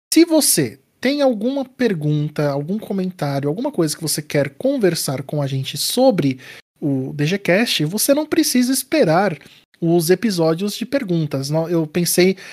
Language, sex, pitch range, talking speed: Portuguese, male, 160-235 Hz, 140 wpm